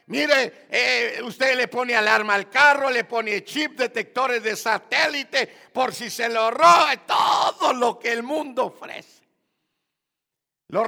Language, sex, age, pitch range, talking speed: Spanish, male, 50-69, 175-245 Hz, 145 wpm